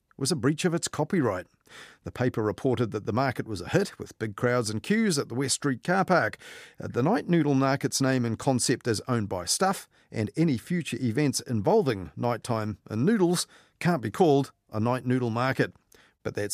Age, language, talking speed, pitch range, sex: 40-59, English, 195 wpm, 110-145 Hz, male